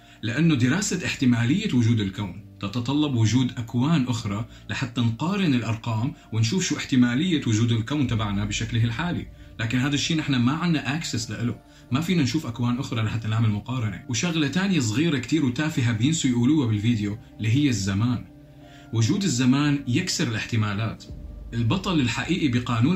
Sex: male